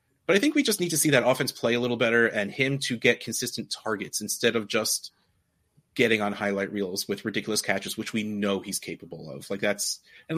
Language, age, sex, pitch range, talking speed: English, 30-49, male, 110-160 Hz, 225 wpm